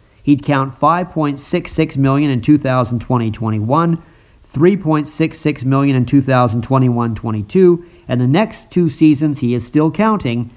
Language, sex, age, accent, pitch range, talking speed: English, male, 50-69, American, 120-160 Hz, 110 wpm